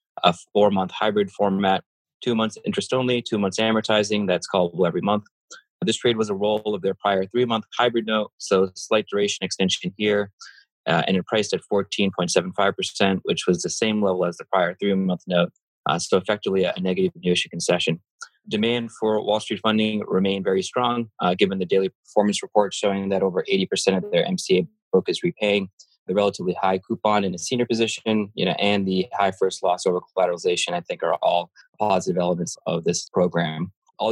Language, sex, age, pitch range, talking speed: English, male, 20-39, 95-110 Hz, 185 wpm